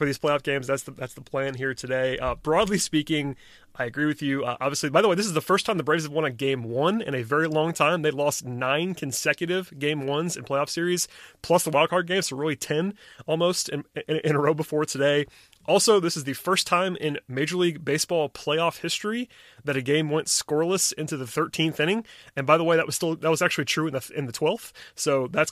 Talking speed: 240 wpm